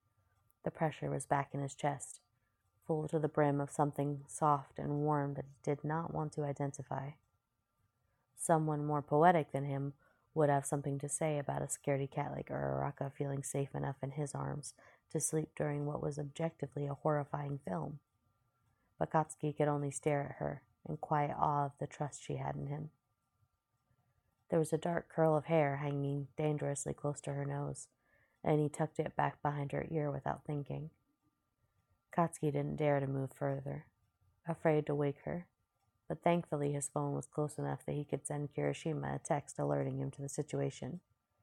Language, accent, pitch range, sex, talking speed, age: English, American, 135-150 Hz, female, 180 wpm, 30-49